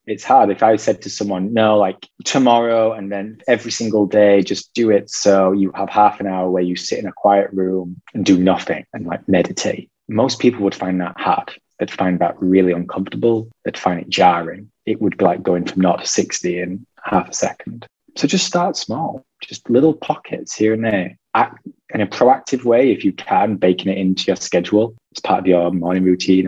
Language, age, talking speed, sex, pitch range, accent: English, 20-39, 210 wpm, male, 95-105 Hz, British